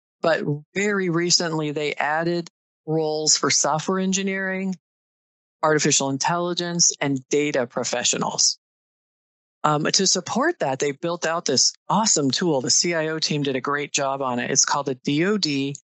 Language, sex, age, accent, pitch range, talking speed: English, female, 40-59, American, 145-180 Hz, 140 wpm